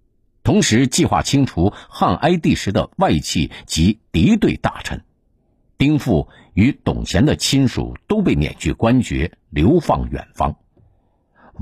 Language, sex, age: Chinese, male, 50-69